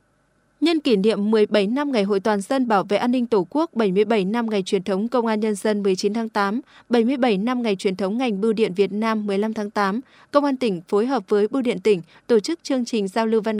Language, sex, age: Vietnamese, female, 20-39